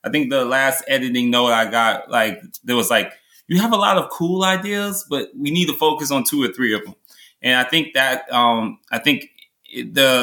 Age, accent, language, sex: 20-39, American, English, male